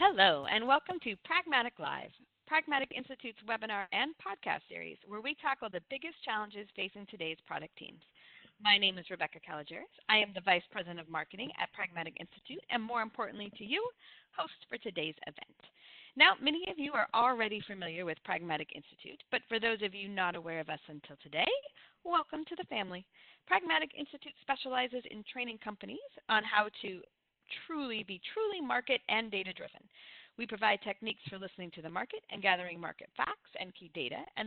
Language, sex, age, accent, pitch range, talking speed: English, female, 40-59, American, 190-260 Hz, 180 wpm